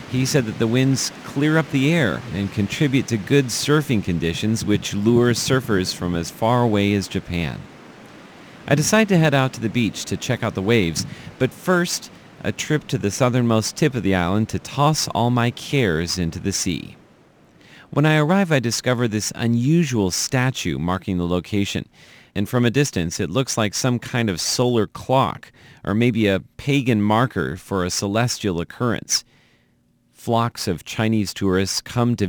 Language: English